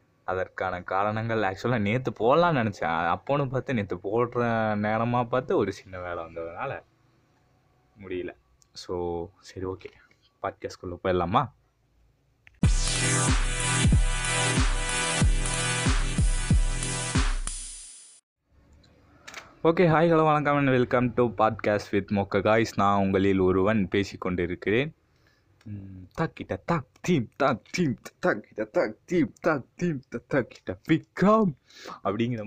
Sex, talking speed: male, 70 wpm